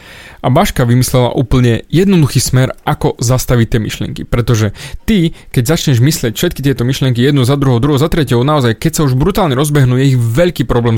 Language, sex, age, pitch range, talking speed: Slovak, male, 20-39, 120-165 Hz, 185 wpm